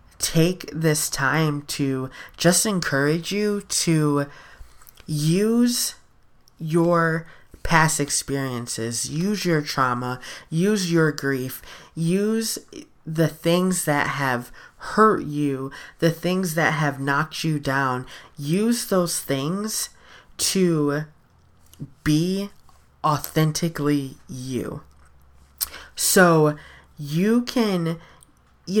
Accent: American